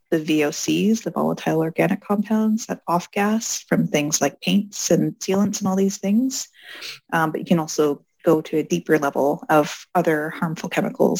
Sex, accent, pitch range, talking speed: female, American, 160-205 Hz, 175 wpm